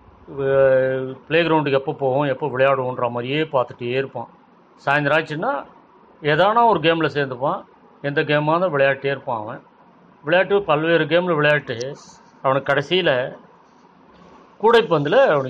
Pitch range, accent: 135-175 Hz, native